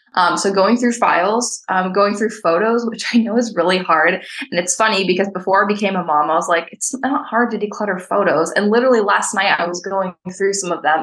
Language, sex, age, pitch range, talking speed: English, female, 20-39, 180-240 Hz, 240 wpm